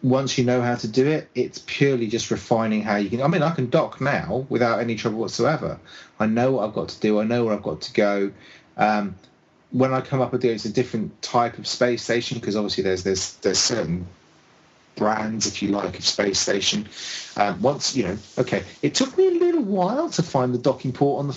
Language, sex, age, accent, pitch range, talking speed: English, male, 30-49, British, 105-130 Hz, 225 wpm